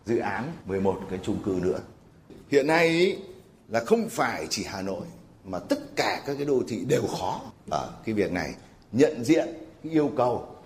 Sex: male